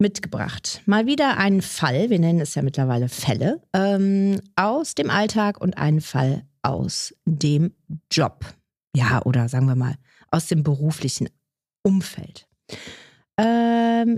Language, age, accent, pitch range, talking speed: German, 30-49, German, 155-210 Hz, 130 wpm